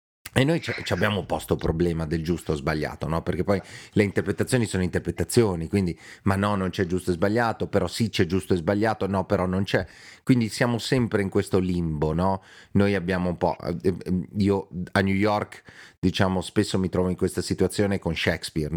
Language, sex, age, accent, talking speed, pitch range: Italian, male, 30-49, native, 190 wpm, 90-110 Hz